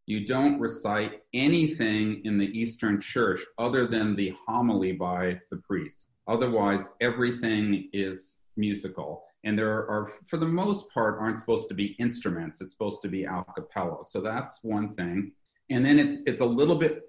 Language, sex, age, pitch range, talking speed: English, male, 40-59, 95-115 Hz, 170 wpm